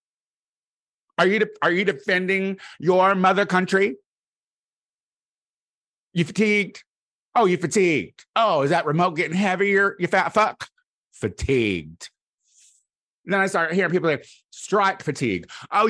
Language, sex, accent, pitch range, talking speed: English, male, American, 130-200 Hz, 130 wpm